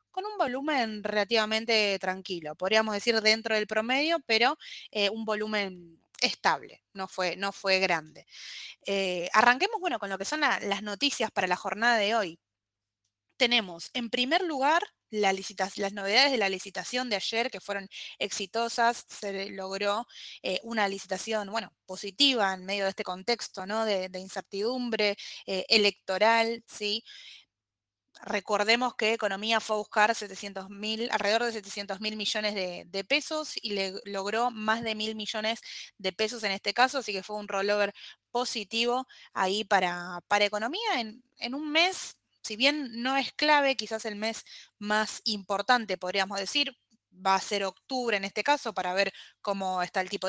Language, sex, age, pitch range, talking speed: Spanish, female, 20-39, 195-235 Hz, 160 wpm